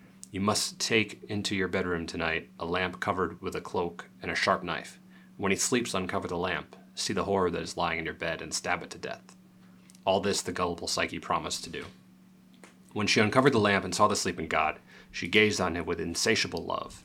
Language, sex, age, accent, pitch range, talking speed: English, male, 30-49, American, 85-100 Hz, 220 wpm